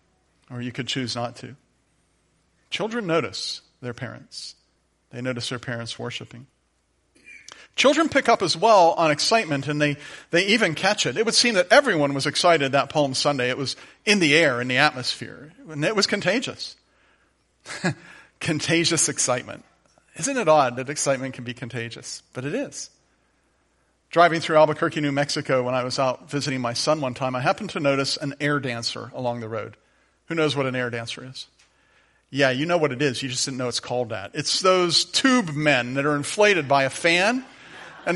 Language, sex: English, male